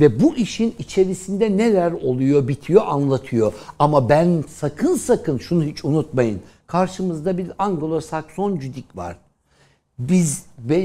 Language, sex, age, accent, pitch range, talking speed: Turkish, male, 60-79, native, 135-200 Hz, 120 wpm